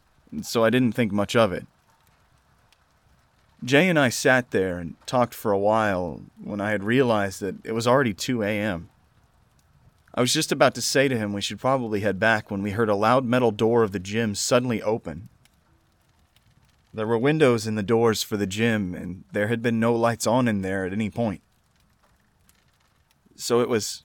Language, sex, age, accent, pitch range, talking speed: English, male, 30-49, American, 100-120 Hz, 190 wpm